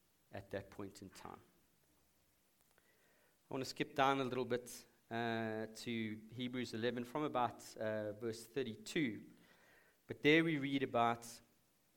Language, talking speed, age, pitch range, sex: English, 135 wpm, 40-59, 110-135 Hz, male